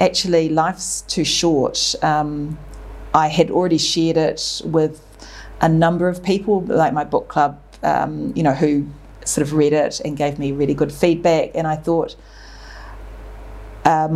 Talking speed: 155 wpm